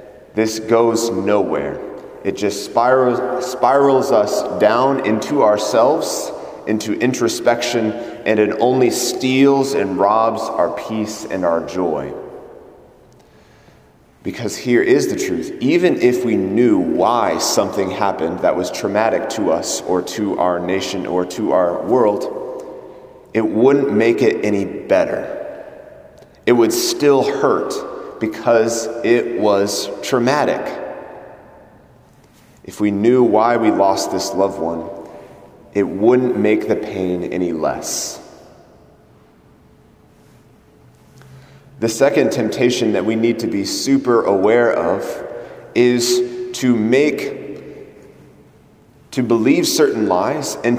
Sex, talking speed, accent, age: male, 115 wpm, American, 30-49